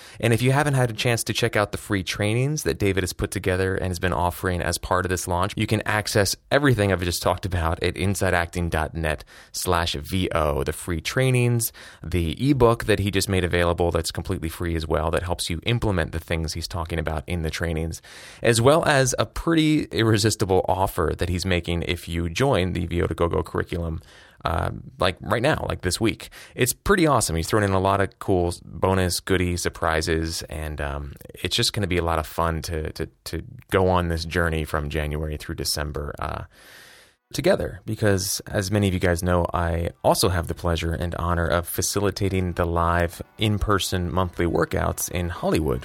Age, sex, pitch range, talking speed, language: 20-39, male, 85-105 Hz, 195 wpm, English